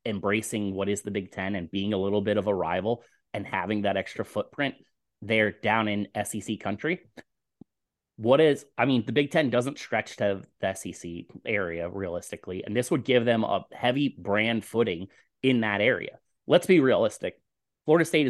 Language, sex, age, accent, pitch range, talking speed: English, male, 30-49, American, 100-125 Hz, 180 wpm